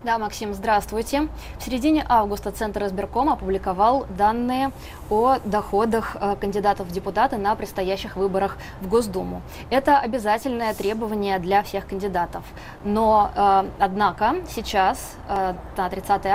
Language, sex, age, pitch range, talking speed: Russian, female, 20-39, 195-230 Hz, 115 wpm